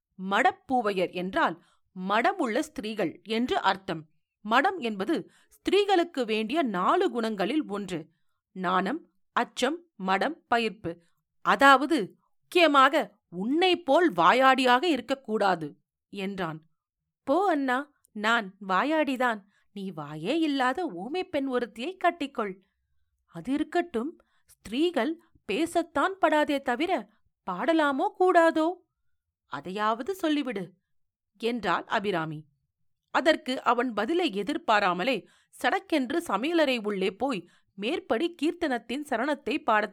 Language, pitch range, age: Tamil, 195-315 Hz, 40-59